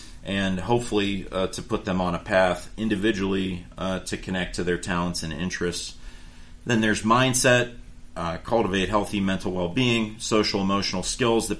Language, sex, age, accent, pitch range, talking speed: English, male, 40-59, American, 90-105 Hz, 150 wpm